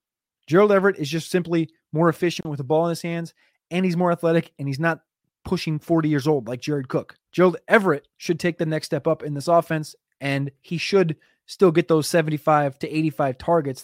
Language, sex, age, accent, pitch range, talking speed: English, male, 20-39, American, 140-170 Hz, 210 wpm